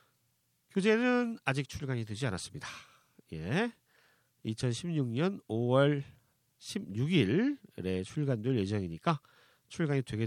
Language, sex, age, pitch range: Korean, male, 40-59, 110-180 Hz